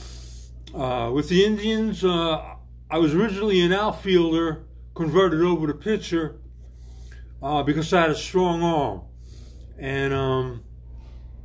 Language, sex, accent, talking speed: English, male, American, 120 wpm